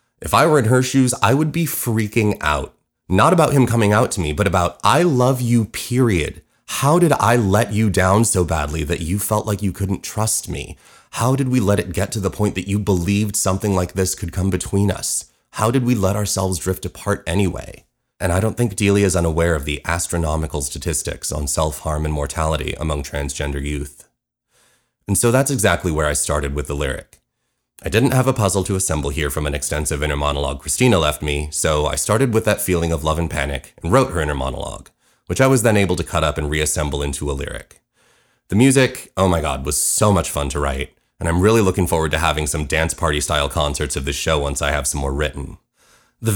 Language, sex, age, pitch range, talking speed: English, male, 30-49, 75-105 Hz, 220 wpm